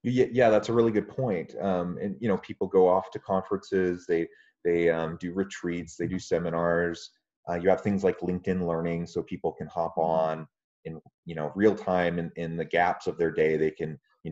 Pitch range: 80-95 Hz